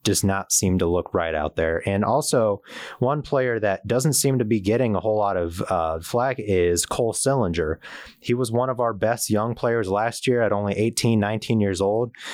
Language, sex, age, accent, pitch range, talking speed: English, male, 30-49, American, 95-115 Hz, 210 wpm